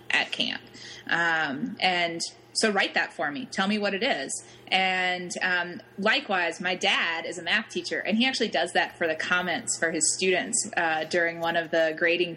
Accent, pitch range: American, 165-200 Hz